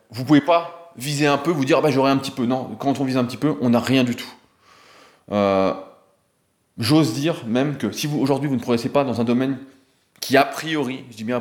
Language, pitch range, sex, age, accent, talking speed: French, 120-145 Hz, male, 20-39, French, 260 wpm